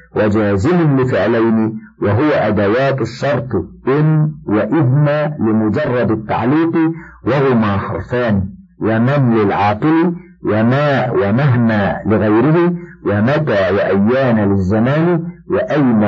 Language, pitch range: Arabic, 110-150 Hz